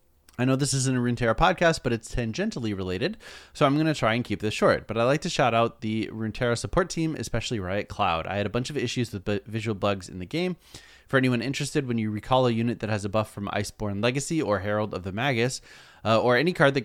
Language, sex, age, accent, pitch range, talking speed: English, male, 20-39, American, 105-130 Hz, 250 wpm